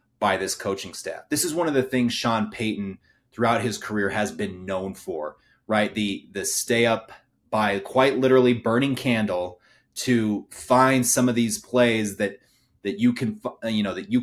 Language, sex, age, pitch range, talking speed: English, male, 30-49, 105-125 Hz, 180 wpm